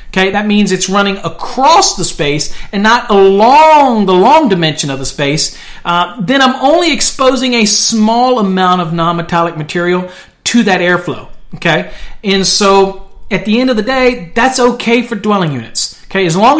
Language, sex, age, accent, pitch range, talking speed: English, male, 40-59, American, 170-225 Hz, 175 wpm